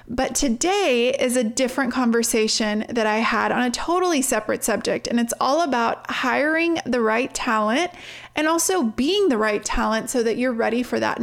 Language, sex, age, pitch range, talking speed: English, female, 30-49, 220-265 Hz, 180 wpm